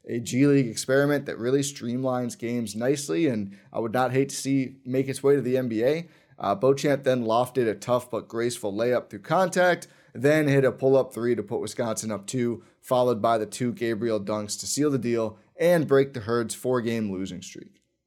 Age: 30-49